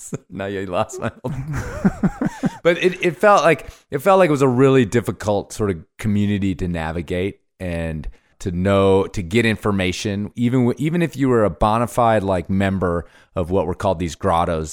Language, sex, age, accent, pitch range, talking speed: English, male, 30-49, American, 90-115 Hz, 180 wpm